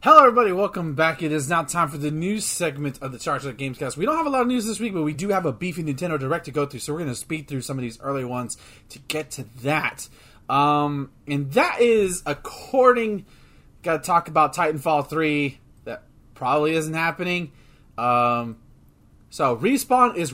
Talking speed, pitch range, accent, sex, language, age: 205 wpm, 130-175 Hz, American, male, English, 30-49